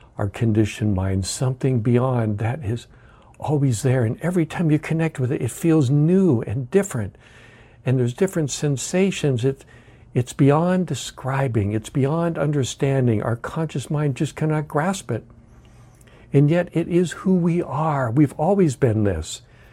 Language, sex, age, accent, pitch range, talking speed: English, male, 60-79, American, 105-140 Hz, 150 wpm